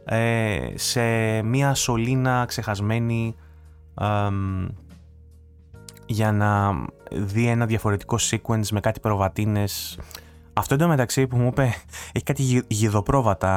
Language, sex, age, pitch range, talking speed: Greek, male, 20-39, 95-120 Hz, 110 wpm